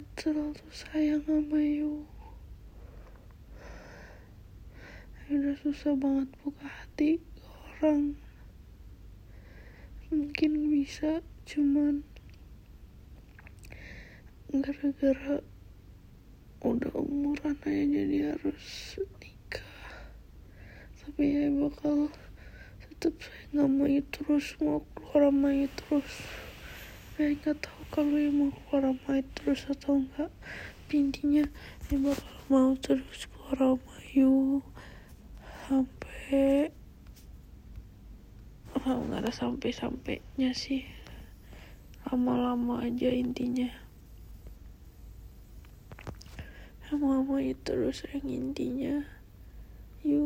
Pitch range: 245-295 Hz